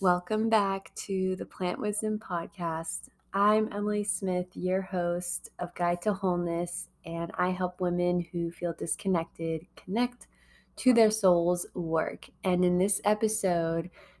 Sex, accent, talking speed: female, American, 135 wpm